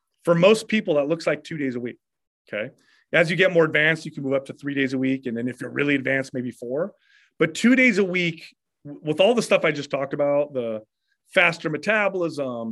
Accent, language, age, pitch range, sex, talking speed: American, English, 30-49, 130-170 Hz, male, 230 wpm